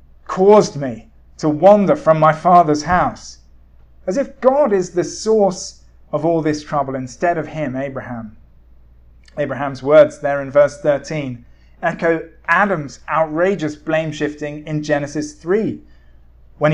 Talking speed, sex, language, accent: 135 wpm, male, English, British